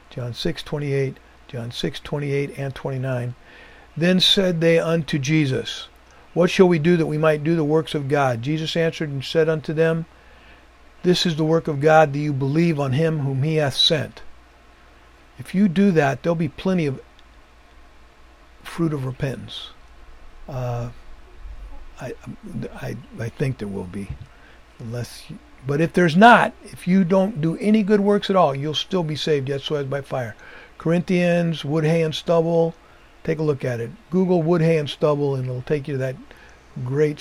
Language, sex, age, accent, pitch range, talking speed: English, male, 50-69, American, 125-160 Hz, 180 wpm